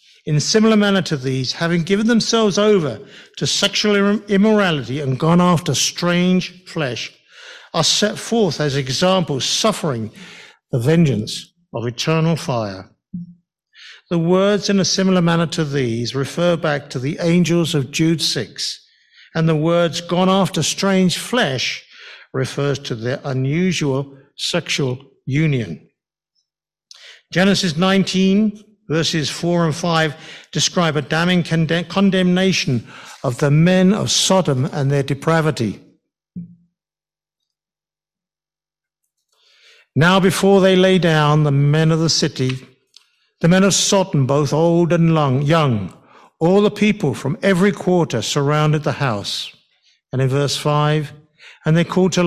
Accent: British